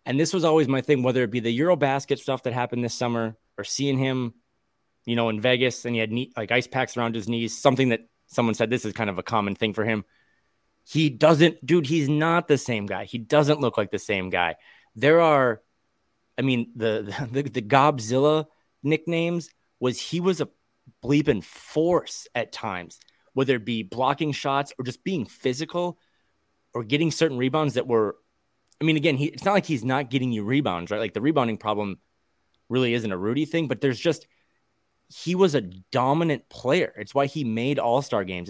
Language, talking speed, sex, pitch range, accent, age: English, 200 wpm, male, 115-145 Hz, American, 30-49